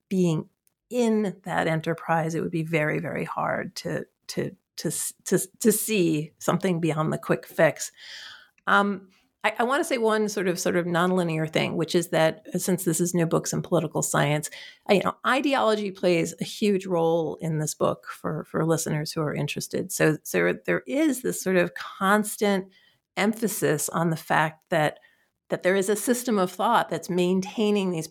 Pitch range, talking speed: 165-215 Hz, 180 wpm